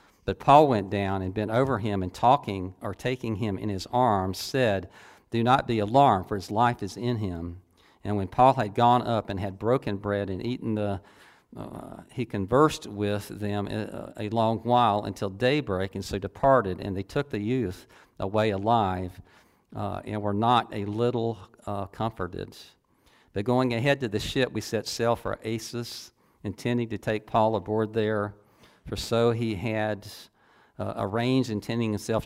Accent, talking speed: American, 170 wpm